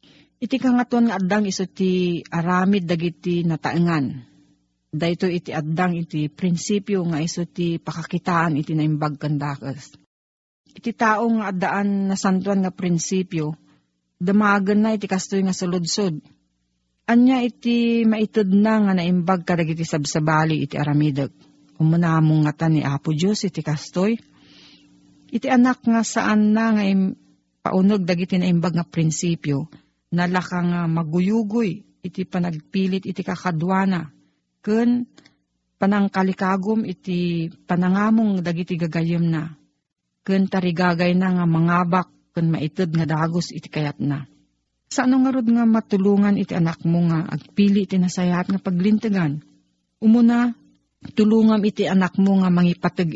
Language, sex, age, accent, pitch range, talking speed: Filipino, female, 40-59, native, 160-200 Hz, 125 wpm